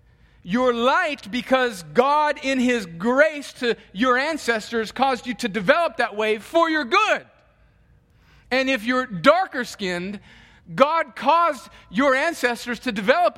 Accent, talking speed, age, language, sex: American, 135 wpm, 40-59, English, male